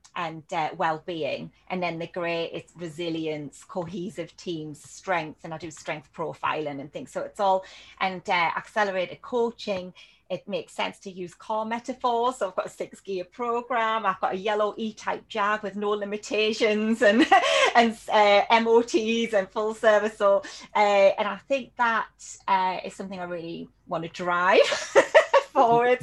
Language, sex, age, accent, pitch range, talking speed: English, female, 30-49, British, 185-235 Hz, 165 wpm